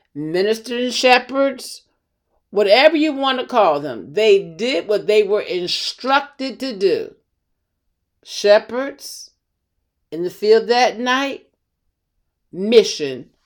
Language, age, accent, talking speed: English, 50-69, American, 105 wpm